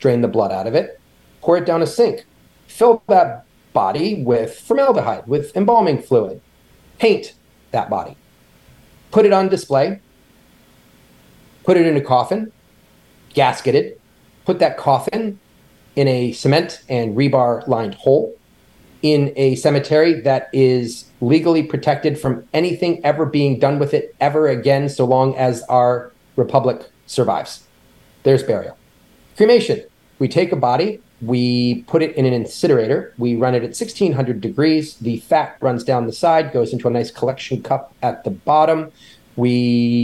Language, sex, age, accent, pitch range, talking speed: English, male, 30-49, American, 120-160 Hz, 150 wpm